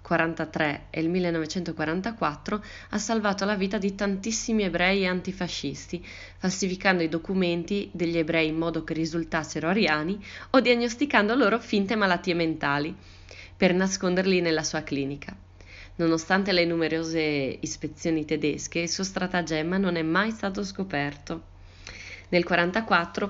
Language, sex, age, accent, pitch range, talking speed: Italian, female, 20-39, native, 150-190 Hz, 125 wpm